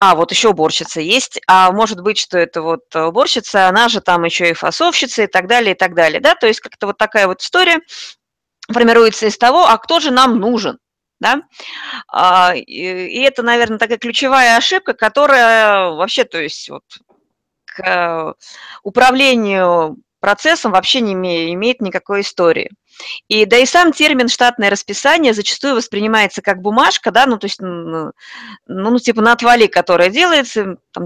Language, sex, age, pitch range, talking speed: Russian, female, 30-49, 195-260 Hz, 160 wpm